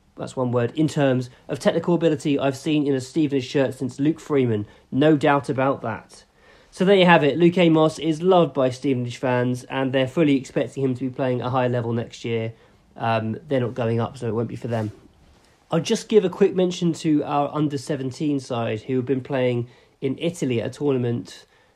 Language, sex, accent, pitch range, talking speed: English, male, British, 125-150 Hz, 210 wpm